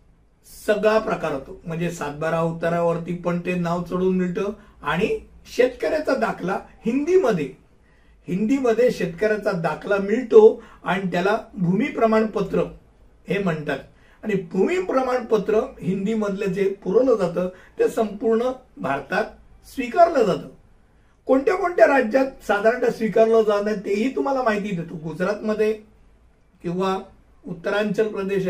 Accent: native